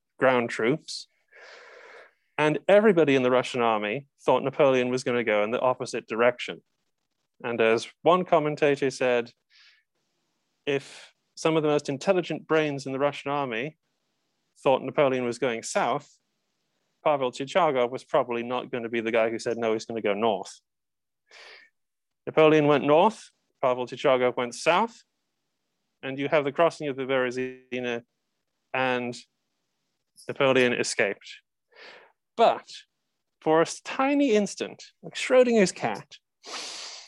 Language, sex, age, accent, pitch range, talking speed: English, male, 30-49, British, 125-165 Hz, 135 wpm